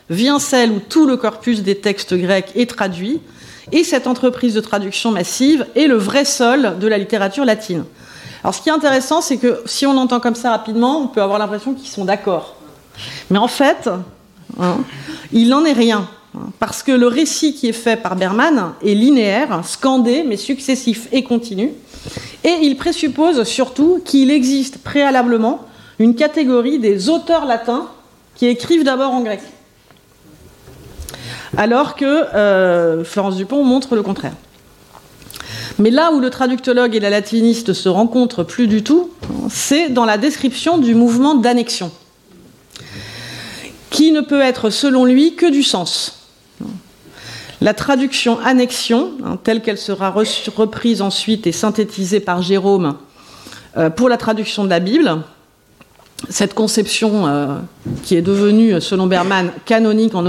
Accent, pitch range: French, 200-270 Hz